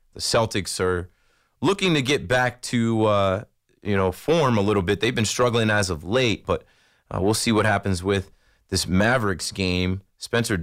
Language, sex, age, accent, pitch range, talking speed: English, male, 30-49, American, 100-135 Hz, 180 wpm